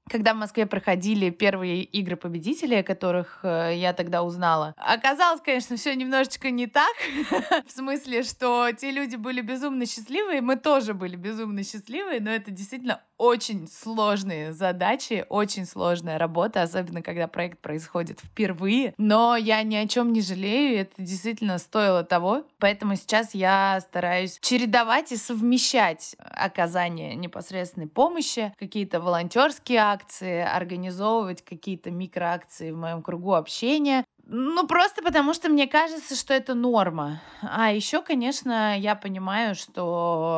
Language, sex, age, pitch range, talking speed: Russian, female, 20-39, 180-240 Hz, 140 wpm